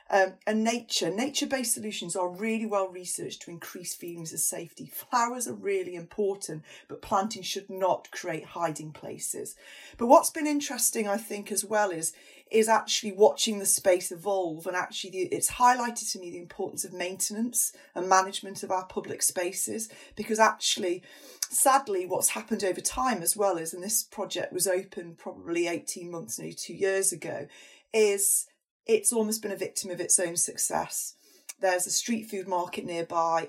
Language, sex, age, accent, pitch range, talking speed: English, female, 30-49, British, 175-215 Hz, 170 wpm